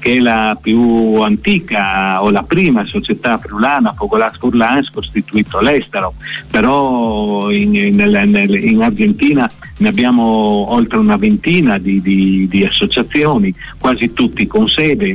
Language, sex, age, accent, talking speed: Italian, male, 50-69, native, 130 wpm